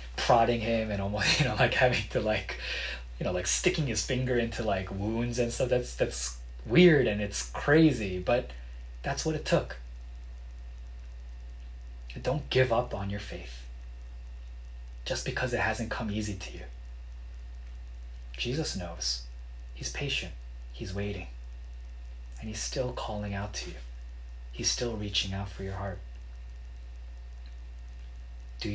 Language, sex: Korean, male